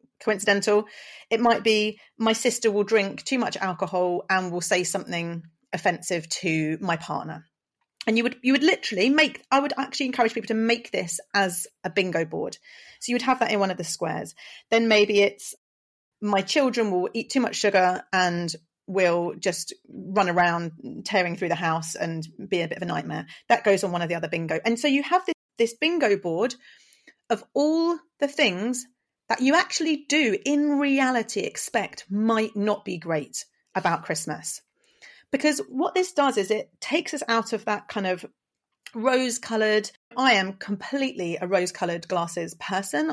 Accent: British